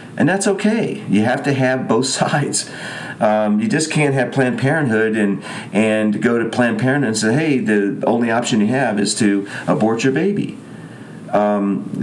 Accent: American